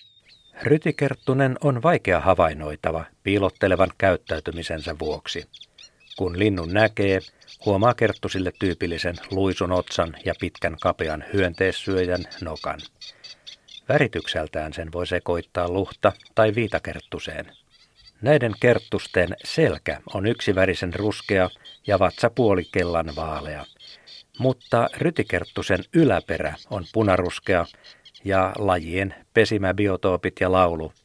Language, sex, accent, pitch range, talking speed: Finnish, male, native, 90-110 Hz, 90 wpm